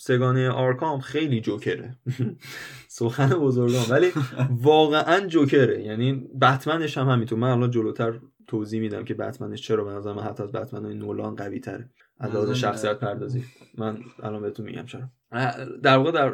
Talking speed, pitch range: 155 wpm, 115-135 Hz